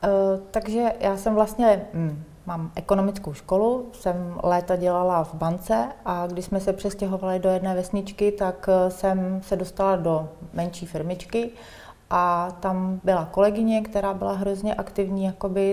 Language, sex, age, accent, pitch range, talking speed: Czech, female, 30-49, native, 170-200 Hz, 135 wpm